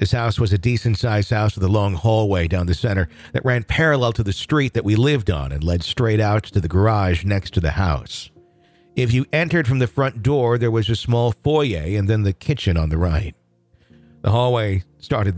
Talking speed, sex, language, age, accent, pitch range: 220 wpm, male, English, 50-69, American, 90-125 Hz